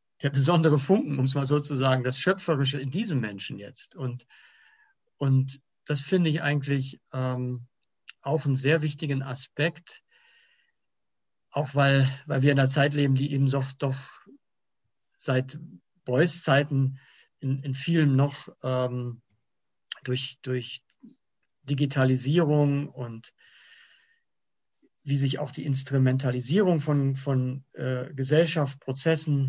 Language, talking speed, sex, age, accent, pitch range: English, 120 wpm, male, 50-69, German, 130-160 Hz